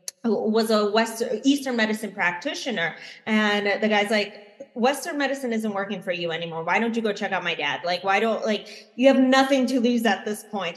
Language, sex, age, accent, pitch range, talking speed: English, female, 20-39, American, 210-255 Hz, 210 wpm